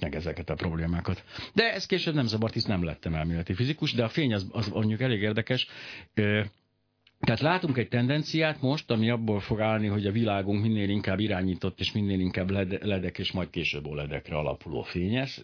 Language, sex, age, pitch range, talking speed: Hungarian, male, 60-79, 90-120 Hz, 180 wpm